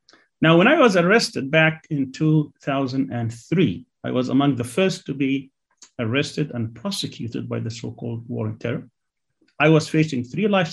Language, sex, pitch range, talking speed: English, male, 135-175 Hz, 160 wpm